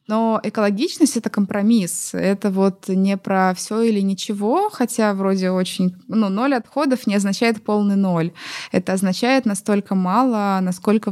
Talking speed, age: 140 wpm, 20-39